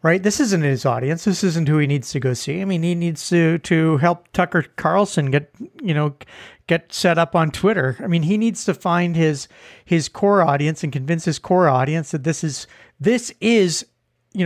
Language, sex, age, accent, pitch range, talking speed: English, male, 40-59, American, 155-200 Hz, 210 wpm